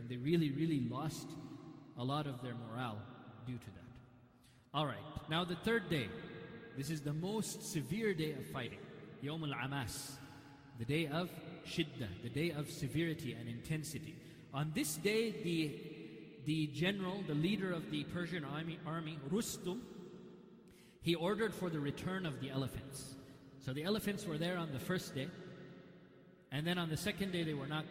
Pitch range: 140-180 Hz